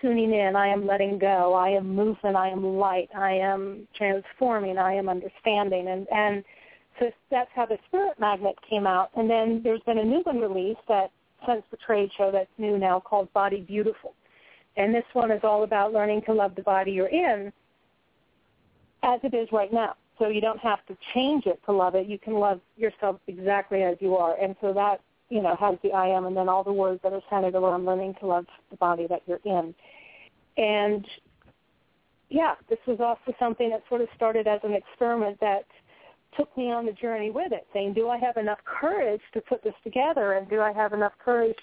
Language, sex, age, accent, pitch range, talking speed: English, female, 40-59, American, 195-230 Hz, 210 wpm